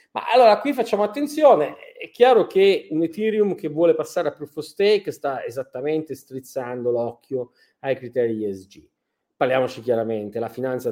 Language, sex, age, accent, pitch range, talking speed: Italian, male, 30-49, native, 120-180 Hz, 155 wpm